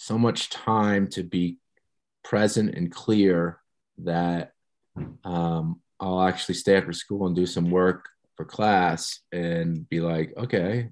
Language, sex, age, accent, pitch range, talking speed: English, male, 40-59, American, 80-105 Hz, 135 wpm